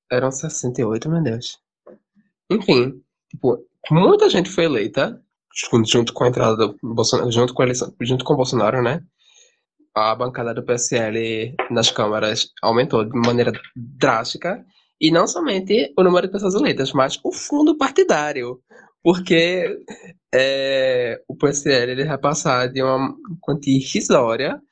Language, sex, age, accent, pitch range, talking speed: Portuguese, male, 10-29, Brazilian, 120-160 Hz, 140 wpm